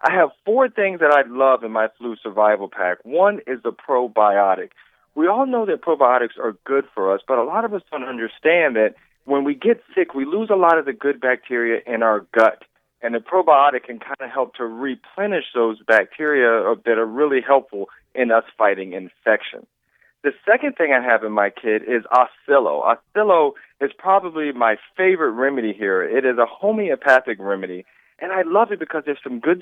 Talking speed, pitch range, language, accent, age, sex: 195 wpm, 115-170 Hz, English, American, 40-59, male